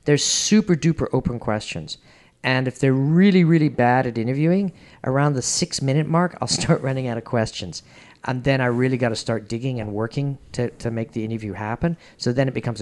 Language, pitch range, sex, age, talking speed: English, 110-135 Hz, male, 50-69, 195 wpm